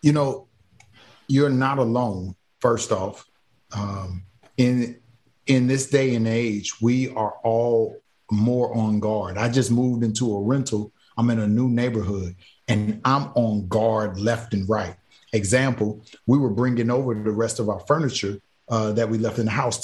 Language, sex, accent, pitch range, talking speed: English, male, American, 110-125 Hz, 165 wpm